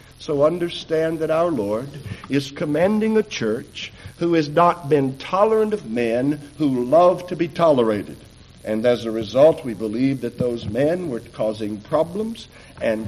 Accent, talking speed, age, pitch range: American, 155 wpm, 60-79, 120-170 Hz